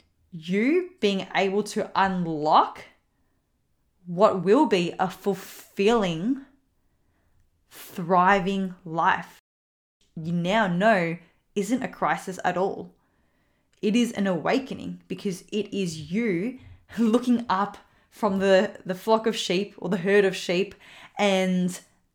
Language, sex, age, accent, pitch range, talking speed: English, female, 10-29, Australian, 175-205 Hz, 115 wpm